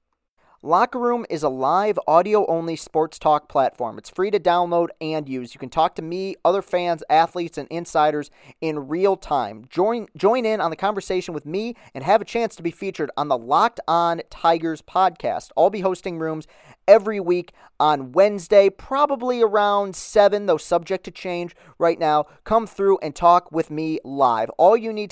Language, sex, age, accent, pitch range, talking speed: English, male, 40-59, American, 150-190 Hz, 180 wpm